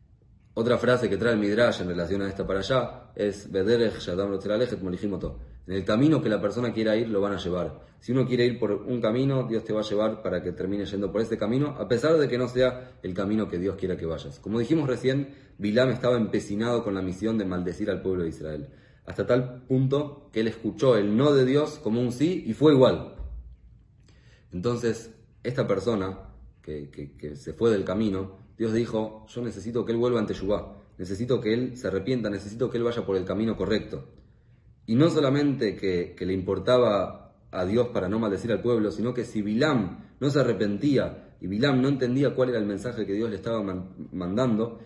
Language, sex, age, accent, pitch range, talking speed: English, male, 30-49, Argentinian, 100-125 Hz, 205 wpm